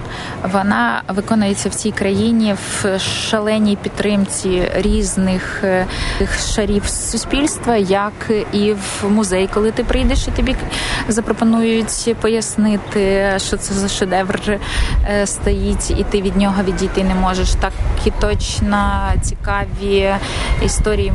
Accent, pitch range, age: native, 180-205 Hz, 20-39